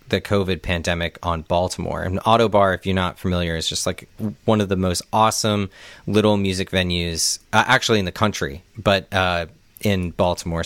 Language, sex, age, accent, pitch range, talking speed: English, male, 30-49, American, 85-105 Hz, 175 wpm